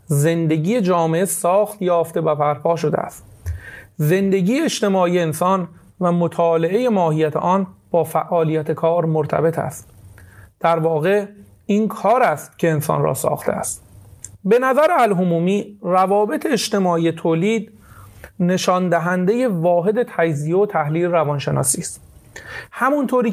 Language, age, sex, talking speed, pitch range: Persian, 30-49, male, 115 wpm, 160-205 Hz